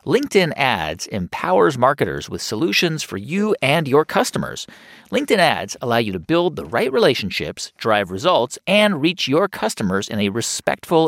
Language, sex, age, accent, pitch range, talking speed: English, male, 40-59, American, 130-190 Hz, 155 wpm